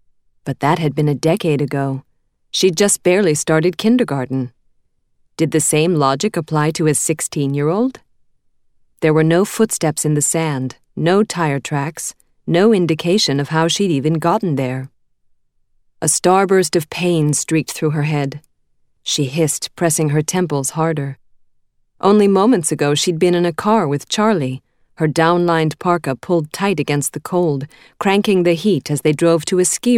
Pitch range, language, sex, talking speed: 145-180 Hz, English, female, 160 wpm